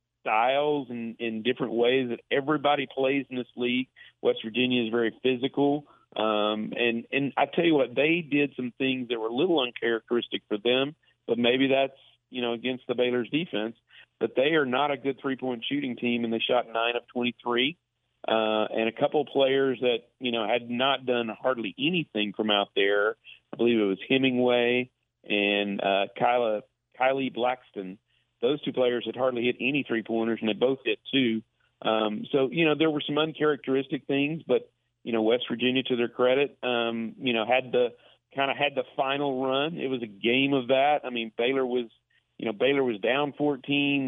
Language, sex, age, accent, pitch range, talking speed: English, male, 40-59, American, 115-135 Hz, 195 wpm